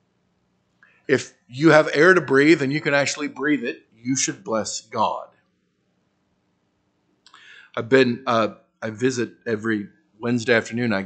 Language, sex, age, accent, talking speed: English, male, 50-69, American, 135 wpm